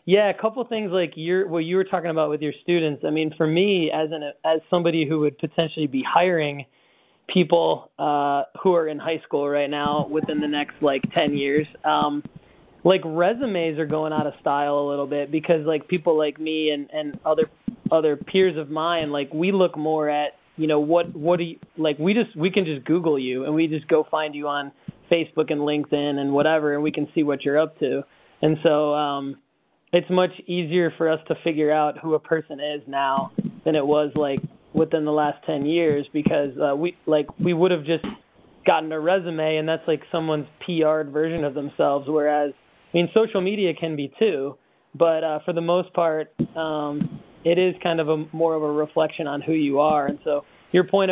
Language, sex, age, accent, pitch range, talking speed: English, male, 20-39, American, 150-170 Hz, 210 wpm